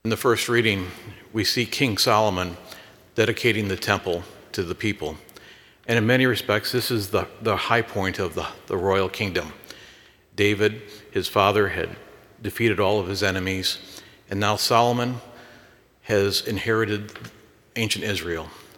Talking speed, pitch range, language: 145 wpm, 95-110 Hz, English